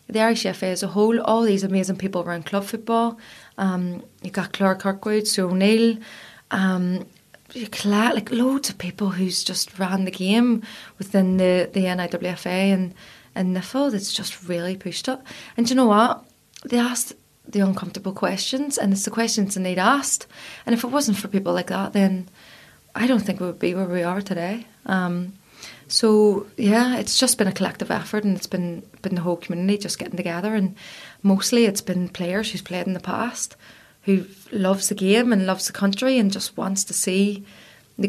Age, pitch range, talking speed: 20-39, 185-220 Hz, 190 wpm